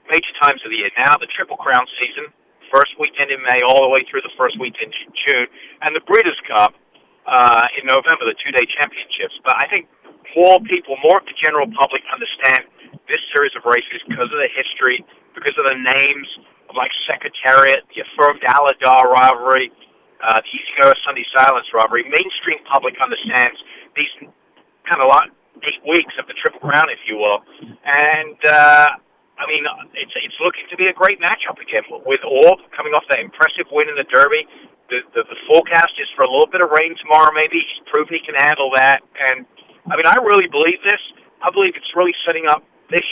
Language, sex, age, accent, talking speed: English, male, 50-69, American, 200 wpm